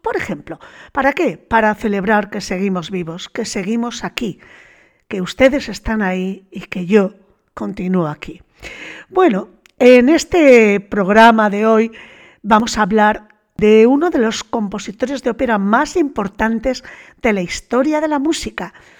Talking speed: 140 wpm